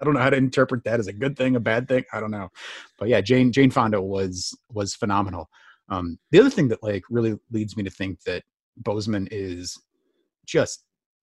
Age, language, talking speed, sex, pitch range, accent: 30-49, English, 215 wpm, male, 95-125 Hz, American